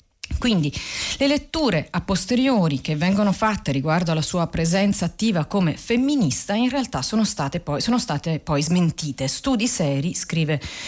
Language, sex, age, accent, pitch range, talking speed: Italian, female, 40-59, native, 160-210 Hz, 150 wpm